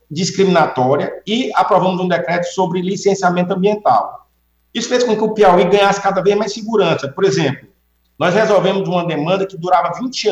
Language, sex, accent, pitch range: Portuguese, male, Brazilian, 150-195 Hz